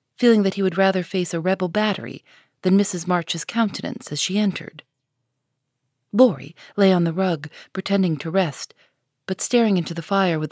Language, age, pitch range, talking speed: English, 40-59, 140-200 Hz, 170 wpm